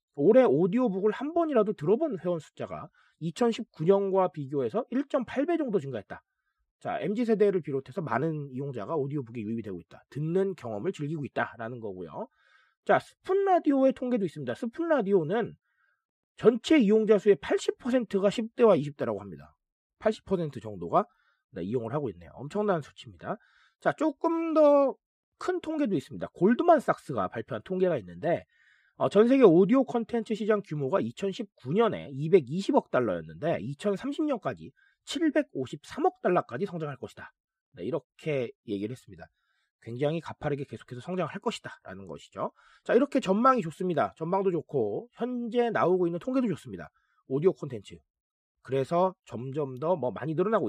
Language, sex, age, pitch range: Korean, male, 40-59, 150-245 Hz